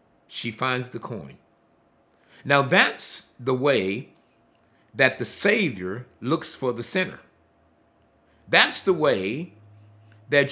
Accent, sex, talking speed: American, male, 110 wpm